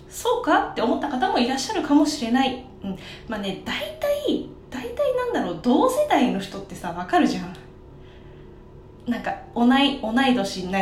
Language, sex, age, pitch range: Japanese, female, 20-39, 200-285 Hz